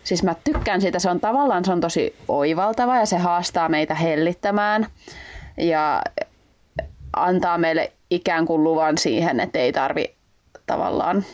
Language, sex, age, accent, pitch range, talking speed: Finnish, female, 20-39, native, 165-210 Hz, 145 wpm